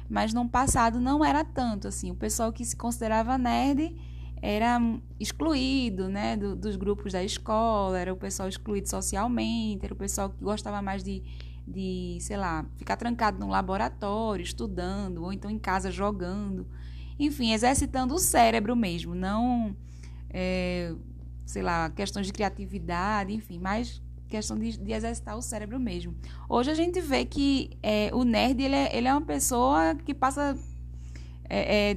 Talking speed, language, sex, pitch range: 160 wpm, Portuguese, female, 180-240 Hz